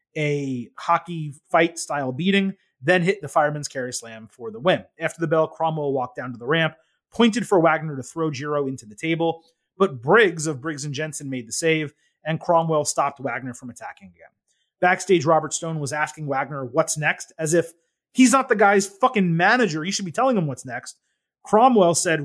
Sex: male